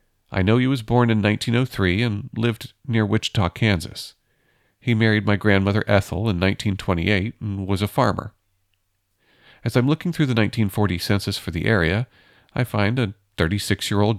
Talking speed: 155 wpm